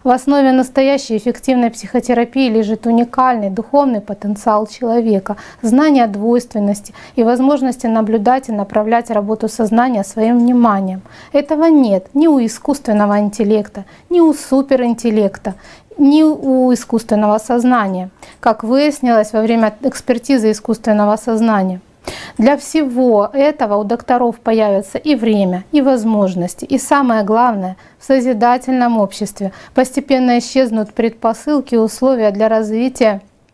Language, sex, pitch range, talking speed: Russian, female, 210-255 Hz, 115 wpm